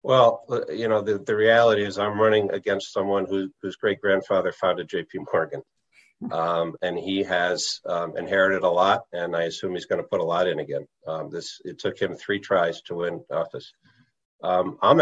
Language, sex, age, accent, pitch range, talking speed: English, male, 50-69, American, 100-125 Hz, 190 wpm